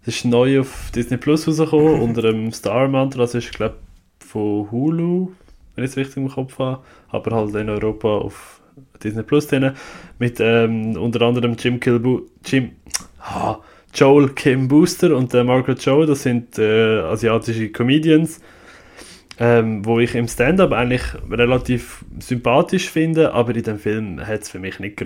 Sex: male